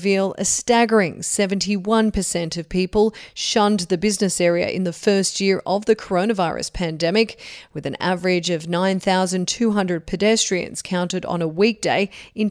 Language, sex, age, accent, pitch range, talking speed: English, female, 30-49, Australian, 175-210 Hz, 140 wpm